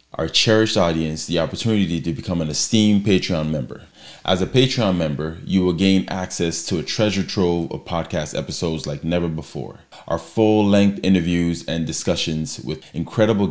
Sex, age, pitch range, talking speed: male, 20-39, 80-95 Hz, 160 wpm